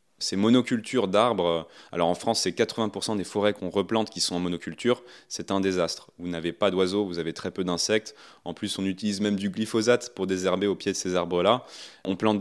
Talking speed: 215 wpm